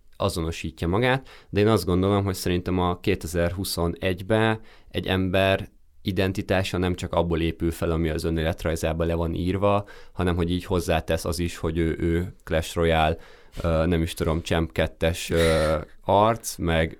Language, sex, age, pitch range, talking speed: Hungarian, male, 20-39, 80-95 Hz, 150 wpm